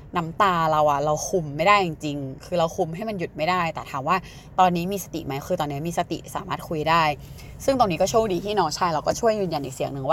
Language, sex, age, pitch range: Thai, female, 20-39, 145-195 Hz